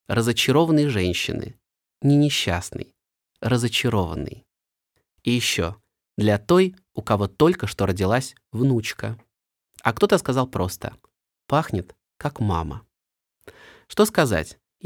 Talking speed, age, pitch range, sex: 95 wpm, 20-39, 105-150 Hz, male